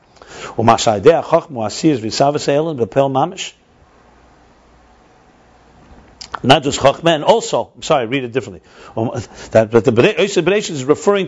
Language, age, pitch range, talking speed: English, 50-69, 130-190 Hz, 85 wpm